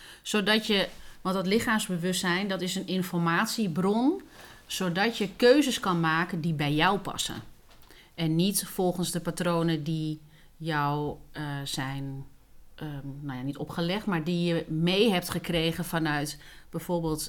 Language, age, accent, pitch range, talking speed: Dutch, 40-59, Dutch, 155-195 Hz, 140 wpm